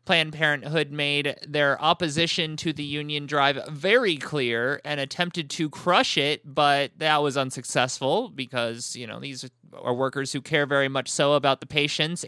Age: 20-39